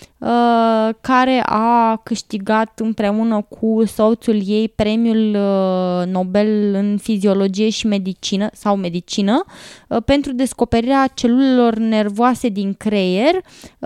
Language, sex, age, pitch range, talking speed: English, female, 20-39, 190-235 Hz, 90 wpm